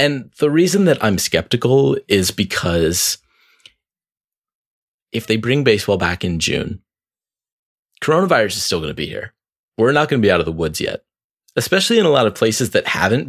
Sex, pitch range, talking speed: male, 90-145 Hz, 180 wpm